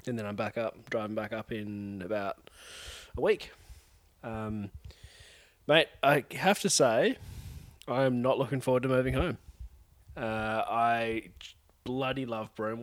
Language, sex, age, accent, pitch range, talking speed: English, male, 20-39, Australian, 95-120 Hz, 140 wpm